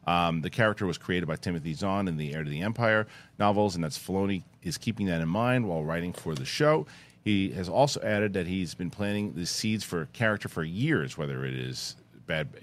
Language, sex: English, male